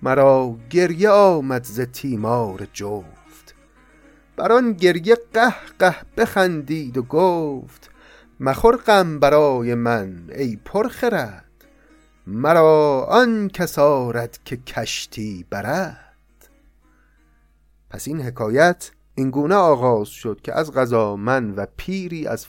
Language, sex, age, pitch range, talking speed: Persian, male, 30-49, 120-180 Hz, 100 wpm